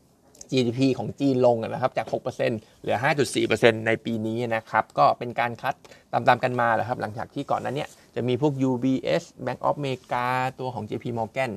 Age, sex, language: 20-39, male, Thai